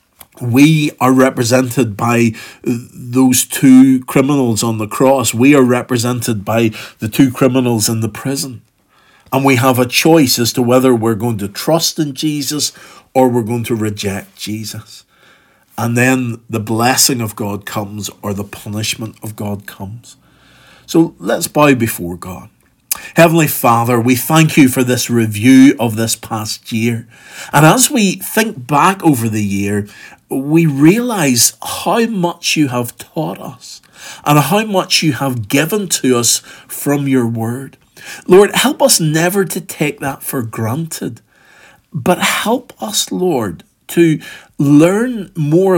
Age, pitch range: 50-69, 115-165 Hz